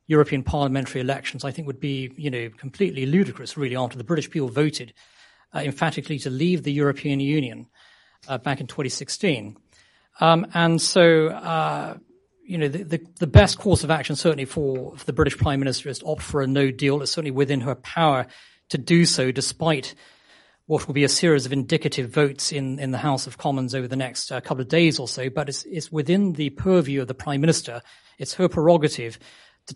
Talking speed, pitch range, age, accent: 200 wpm, 135-155 Hz, 40-59, British